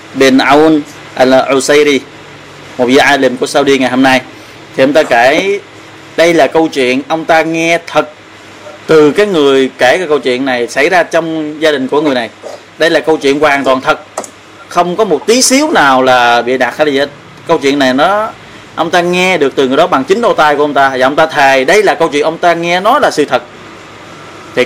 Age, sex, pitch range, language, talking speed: 20-39, male, 130-160 Hz, Vietnamese, 210 wpm